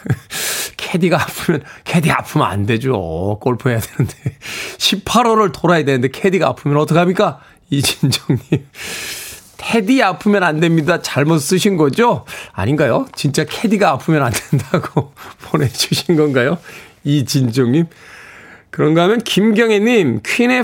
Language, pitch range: Korean, 140-215 Hz